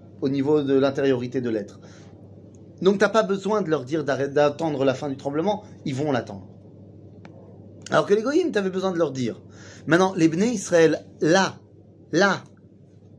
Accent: French